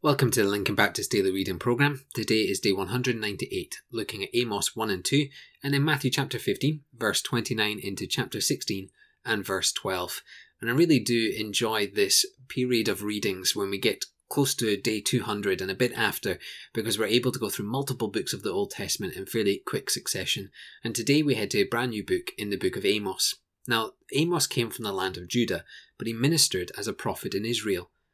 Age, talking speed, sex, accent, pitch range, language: 20-39, 205 wpm, male, British, 110-140 Hz, English